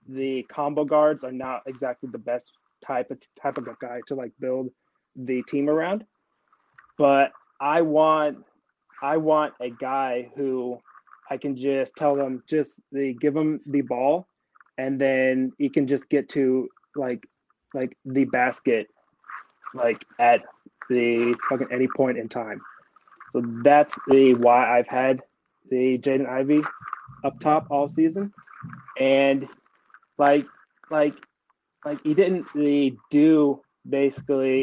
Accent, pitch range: American, 125-145 Hz